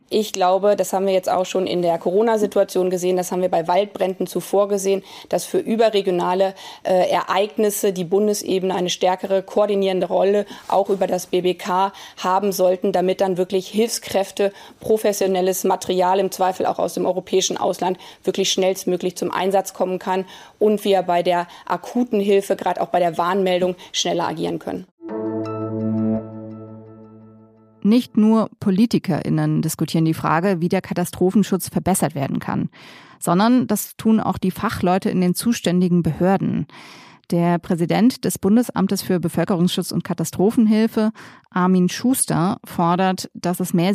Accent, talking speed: German, 145 wpm